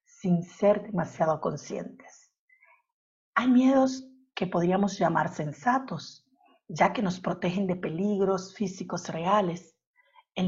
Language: German